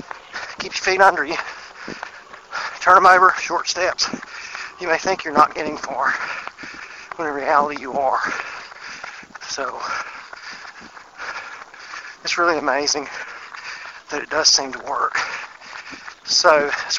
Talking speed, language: 120 wpm, English